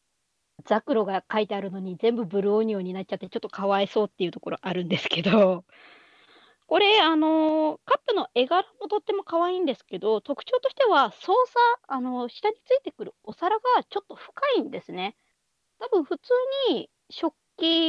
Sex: female